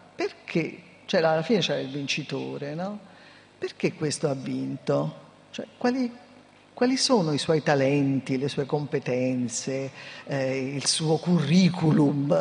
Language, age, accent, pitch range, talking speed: Italian, 50-69, native, 140-180 Hz, 125 wpm